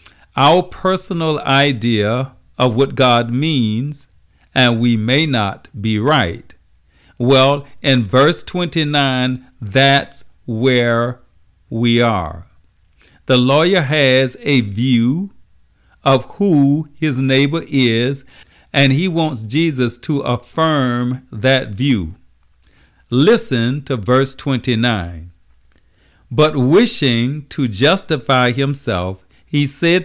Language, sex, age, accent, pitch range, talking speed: English, male, 50-69, American, 105-145 Hz, 100 wpm